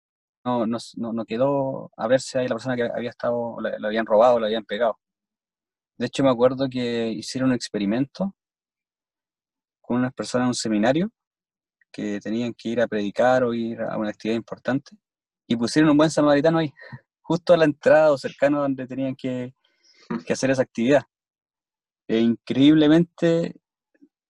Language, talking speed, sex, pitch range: Spanish, 165 wpm, male, 115-140 Hz